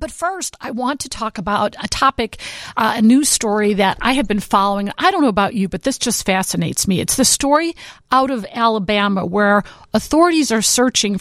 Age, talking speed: 50-69, 205 wpm